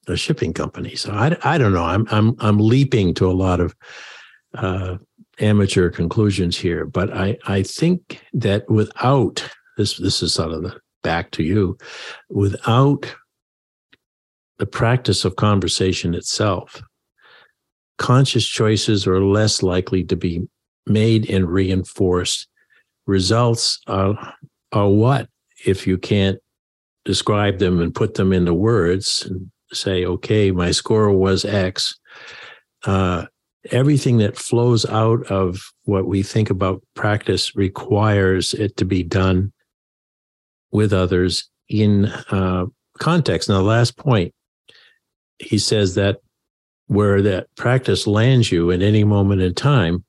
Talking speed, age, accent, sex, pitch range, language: 130 wpm, 60-79, American, male, 95-115 Hz, English